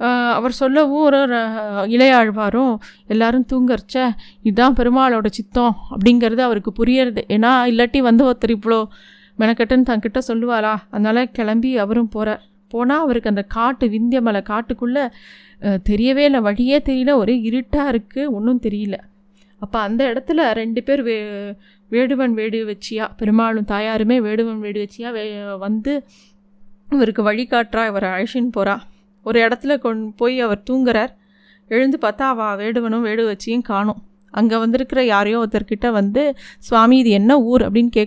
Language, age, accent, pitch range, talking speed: Tamil, 20-39, native, 210-245 Hz, 135 wpm